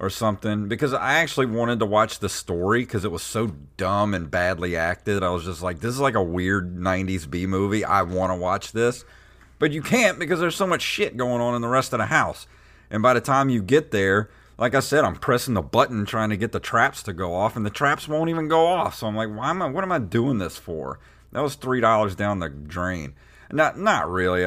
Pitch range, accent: 90-120 Hz, American